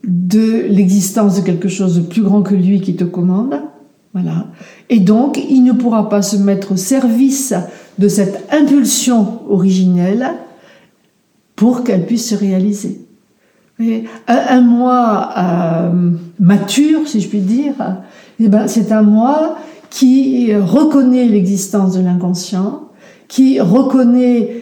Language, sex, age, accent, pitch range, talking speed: French, female, 60-79, French, 195-245 Hz, 130 wpm